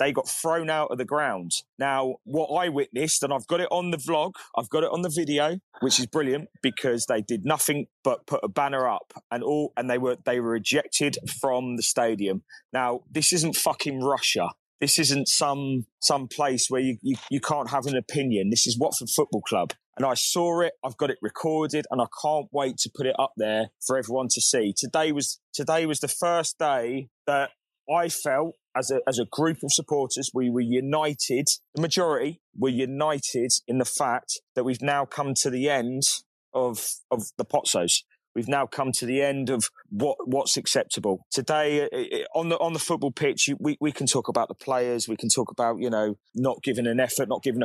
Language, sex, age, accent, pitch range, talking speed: English, male, 20-39, British, 125-155 Hz, 210 wpm